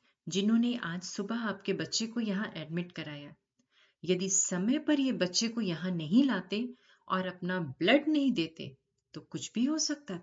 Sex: female